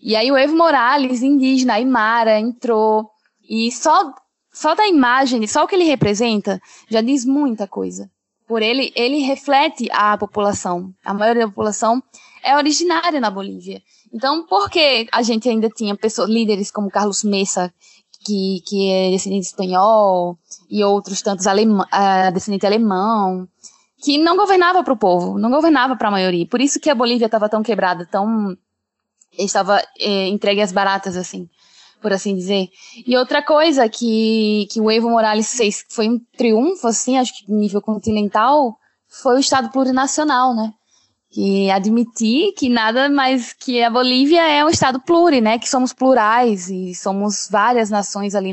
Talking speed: 165 wpm